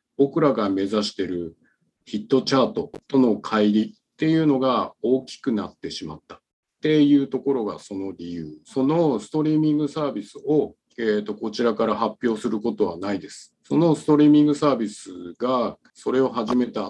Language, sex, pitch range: Japanese, male, 105-145 Hz